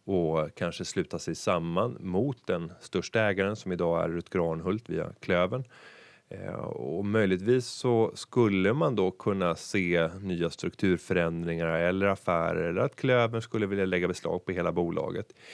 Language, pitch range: Swedish, 90-115 Hz